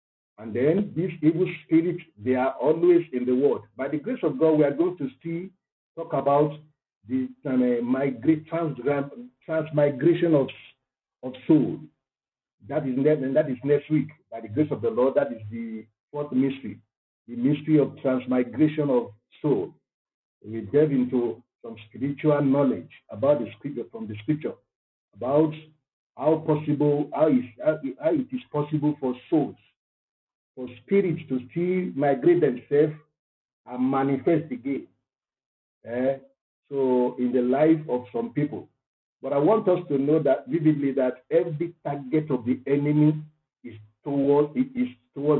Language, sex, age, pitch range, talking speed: English, male, 50-69, 130-165 Hz, 150 wpm